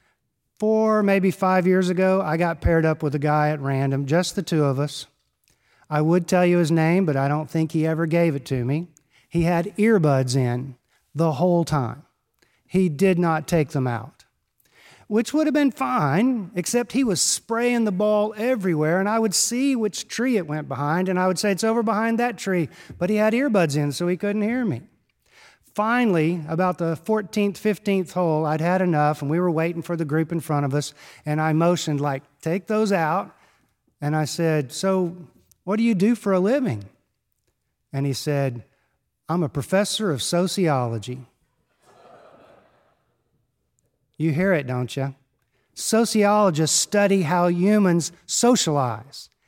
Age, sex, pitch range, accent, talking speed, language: 50-69, male, 150-205 Hz, American, 175 wpm, English